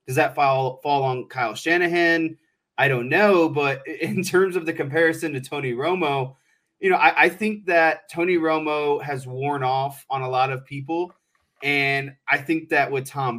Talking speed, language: 185 wpm, English